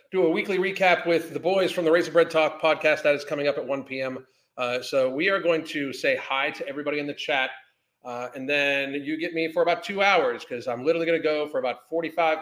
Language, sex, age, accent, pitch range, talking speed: English, male, 40-59, American, 130-180 Hz, 245 wpm